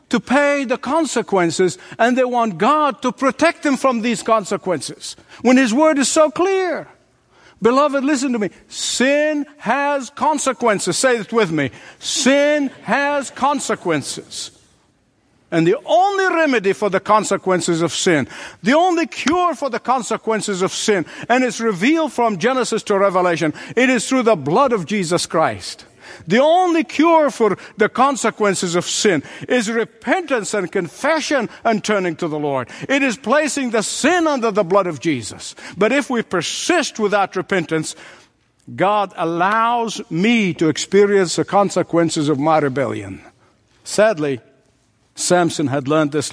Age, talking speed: 50-69, 150 wpm